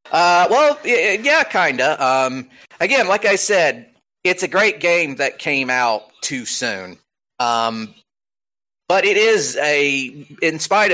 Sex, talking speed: male, 145 wpm